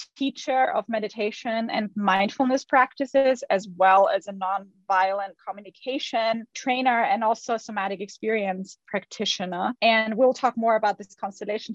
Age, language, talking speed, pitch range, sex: 20-39, English, 130 wpm, 200-235 Hz, female